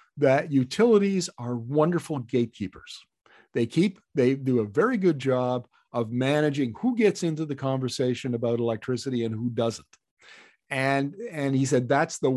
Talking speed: 150 wpm